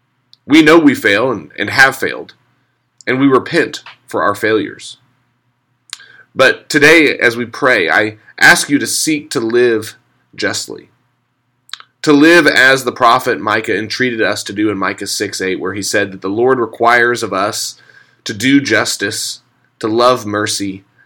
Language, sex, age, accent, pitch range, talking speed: English, male, 30-49, American, 115-130 Hz, 155 wpm